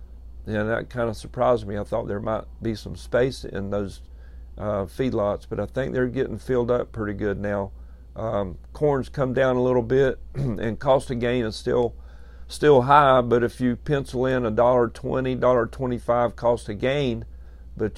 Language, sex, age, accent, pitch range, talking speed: English, male, 50-69, American, 100-125 Hz, 190 wpm